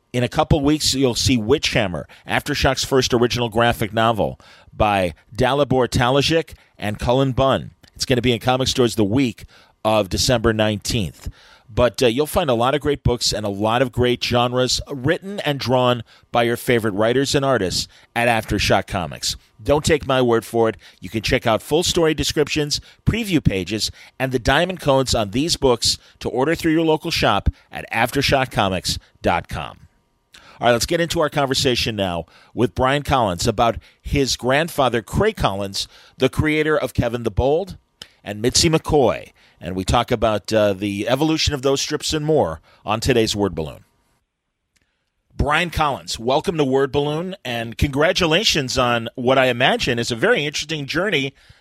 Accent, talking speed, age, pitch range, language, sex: American, 170 wpm, 40-59, 115-145 Hz, English, male